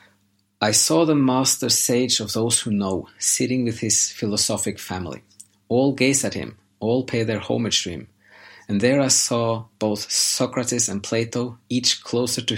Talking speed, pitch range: 165 wpm, 100-125 Hz